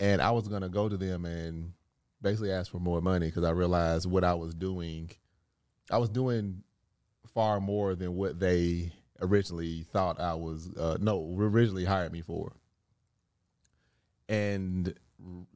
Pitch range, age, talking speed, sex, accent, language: 90-105 Hz, 30-49, 155 wpm, male, American, English